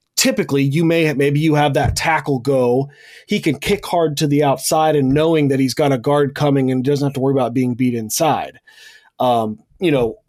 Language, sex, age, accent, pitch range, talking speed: English, male, 30-49, American, 130-150 Hz, 215 wpm